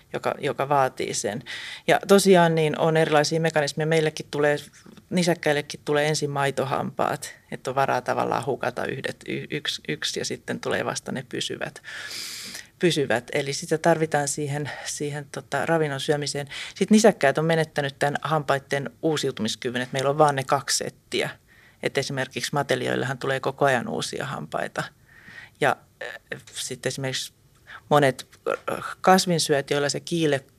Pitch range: 135-160 Hz